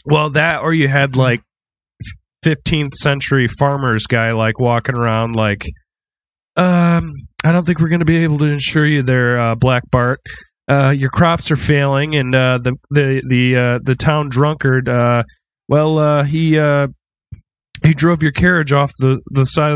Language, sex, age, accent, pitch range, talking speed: English, male, 20-39, American, 120-150 Hz, 175 wpm